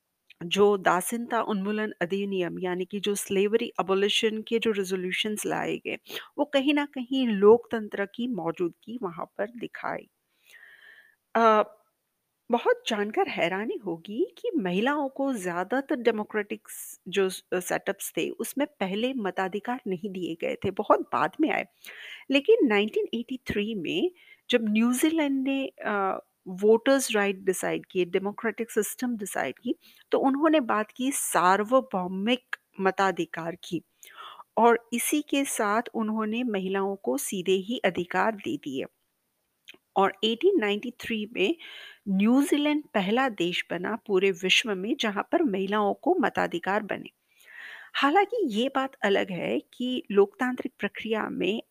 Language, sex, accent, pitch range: Hindi, female, native, 200-270 Hz